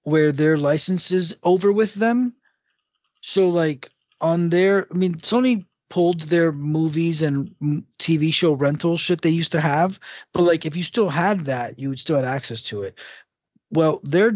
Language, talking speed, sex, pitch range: English, 175 wpm, male, 140-175 Hz